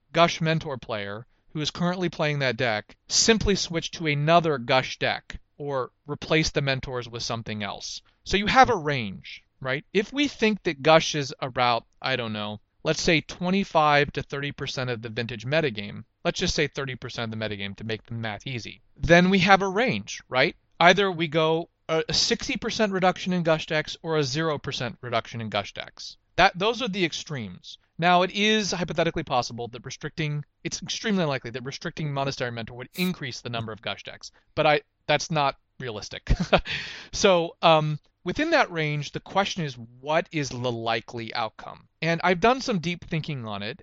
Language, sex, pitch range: English, male, 125-175 Hz